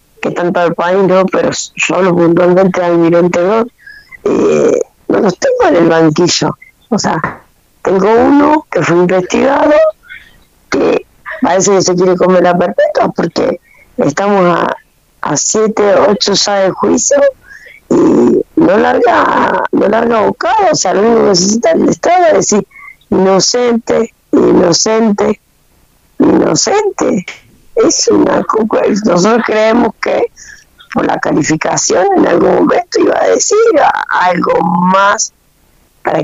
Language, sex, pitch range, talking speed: Spanish, female, 180-240 Hz, 130 wpm